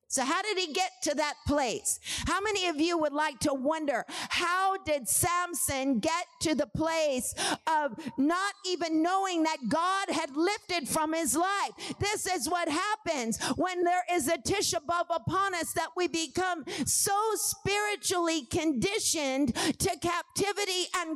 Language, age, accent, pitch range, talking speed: English, 50-69, American, 265-370 Hz, 155 wpm